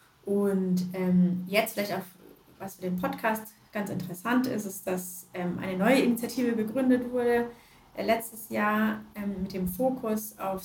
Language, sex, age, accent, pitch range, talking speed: German, female, 20-39, German, 185-225 Hz, 160 wpm